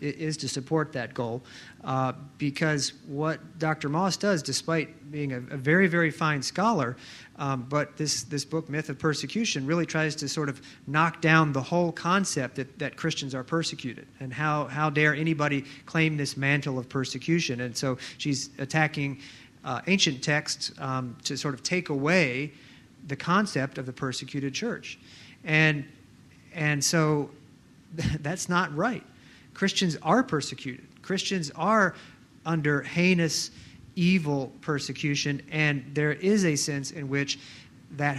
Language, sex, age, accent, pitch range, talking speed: English, male, 40-59, American, 135-160 Hz, 150 wpm